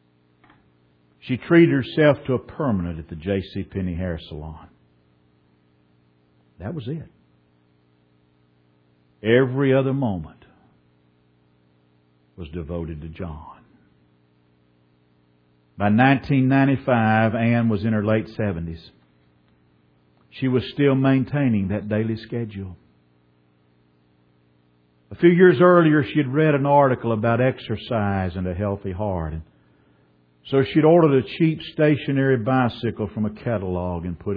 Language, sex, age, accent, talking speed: English, male, 60-79, American, 115 wpm